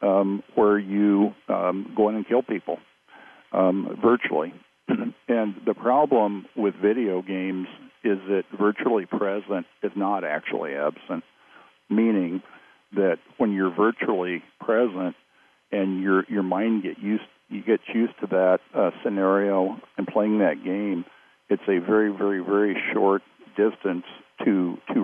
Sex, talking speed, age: male, 135 wpm, 50-69